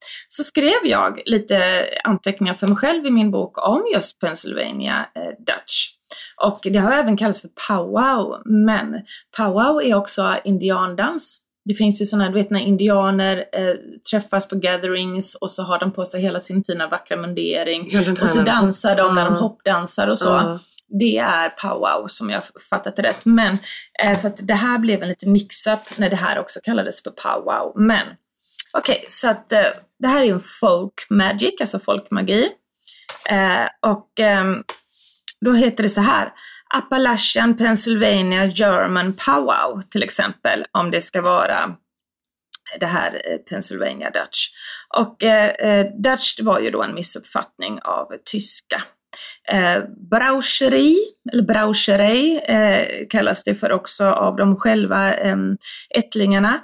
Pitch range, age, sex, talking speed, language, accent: 195-230 Hz, 20-39, female, 145 wpm, Swedish, native